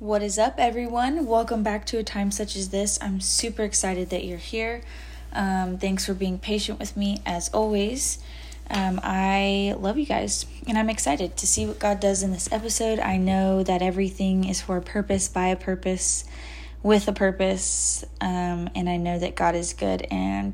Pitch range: 175-205 Hz